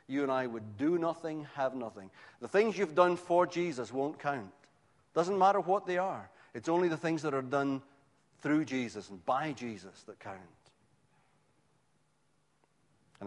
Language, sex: English, male